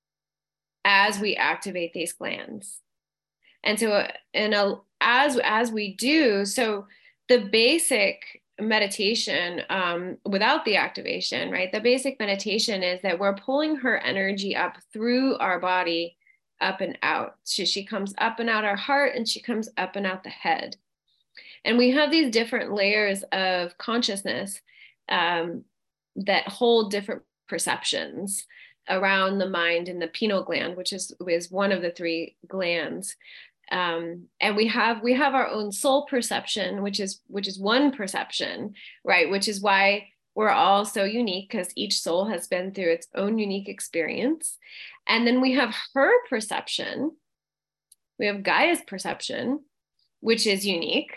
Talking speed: 150 wpm